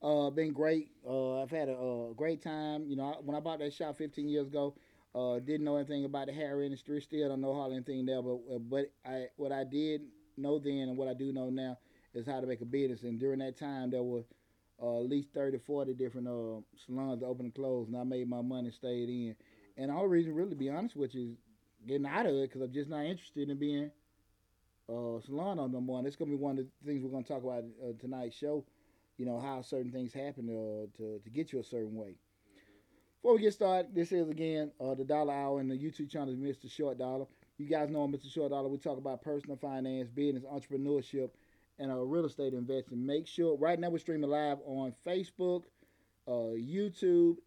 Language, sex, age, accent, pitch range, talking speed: English, male, 30-49, American, 125-150 Hz, 240 wpm